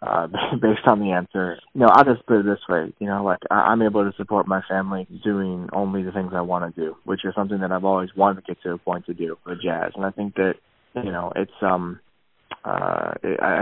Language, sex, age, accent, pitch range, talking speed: English, male, 20-39, American, 90-105 Hz, 240 wpm